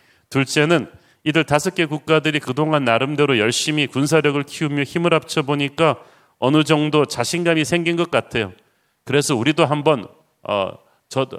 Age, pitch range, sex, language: 40-59, 130-160 Hz, male, Korean